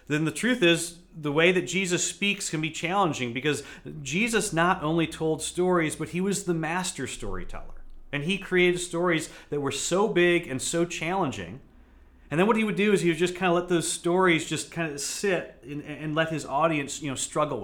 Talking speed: 210 wpm